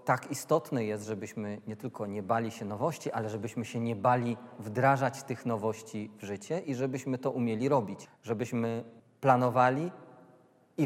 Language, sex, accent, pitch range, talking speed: Polish, male, native, 115-135 Hz, 155 wpm